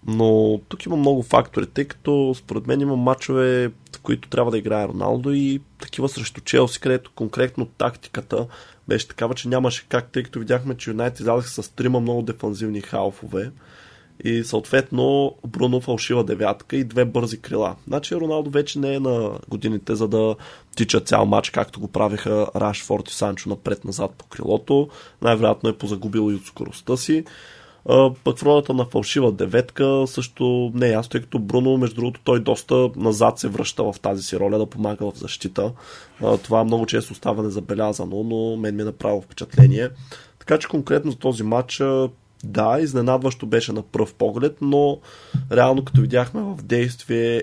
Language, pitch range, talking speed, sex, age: Bulgarian, 110-130 Hz, 165 wpm, male, 20-39